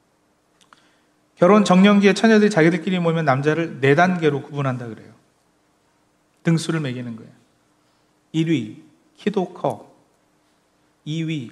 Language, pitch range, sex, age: Korean, 155-215 Hz, male, 40-59